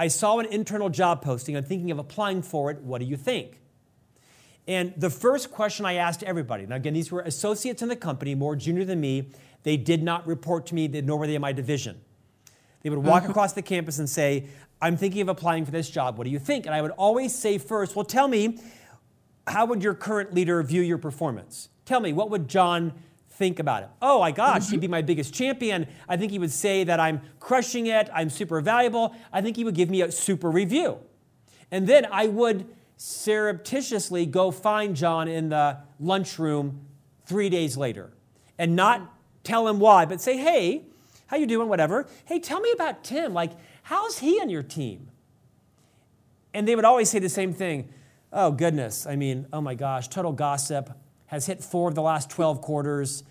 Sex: male